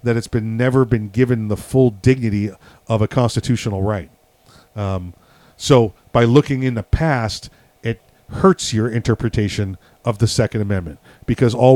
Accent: American